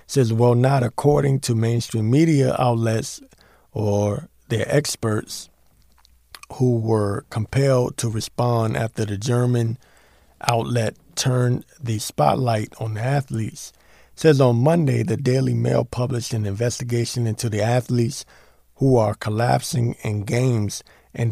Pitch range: 110-140 Hz